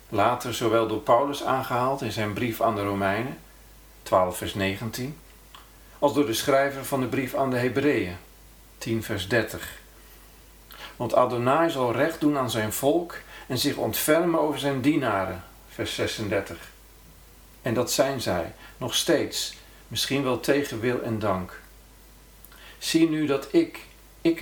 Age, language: 50-69, Dutch